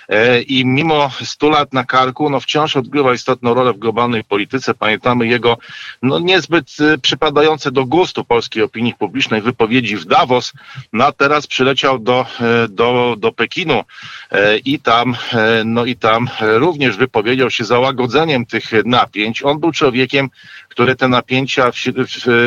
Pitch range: 115-135 Hz